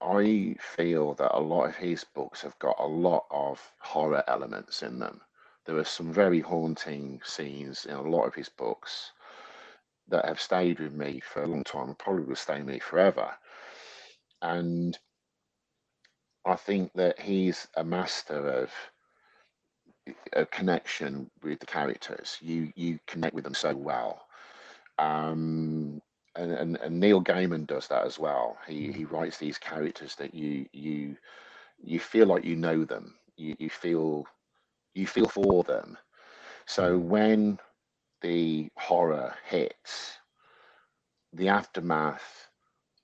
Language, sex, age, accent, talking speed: English, male, 50-69, British, 145 wpm